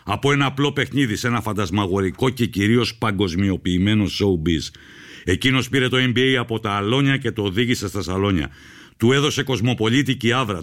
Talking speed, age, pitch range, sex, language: 145 wpm, 60-79, 100-125 Hz, male, Greek